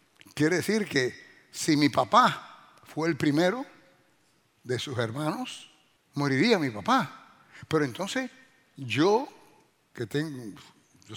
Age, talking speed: 60-79, 115 wpm